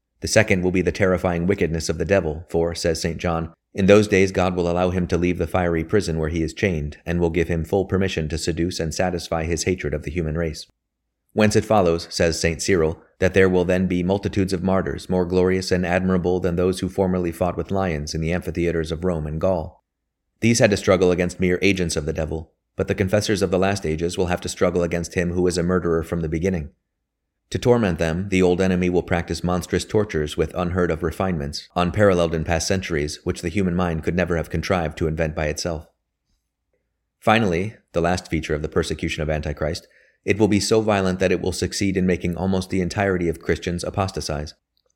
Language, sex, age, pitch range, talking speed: English, male, 30-49, 80-95 Hz, 220 wpm